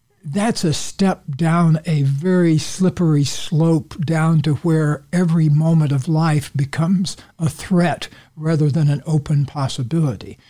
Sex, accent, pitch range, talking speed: male, American, 140-170 Hz, 130 wpm